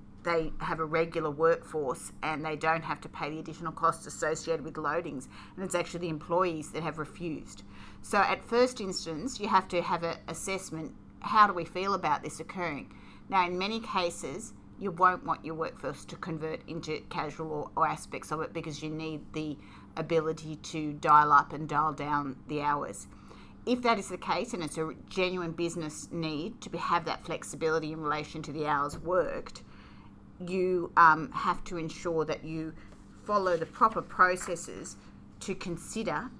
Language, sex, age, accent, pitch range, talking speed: English, female, 40-59, Australian, 150-175 Hz, 175 wpm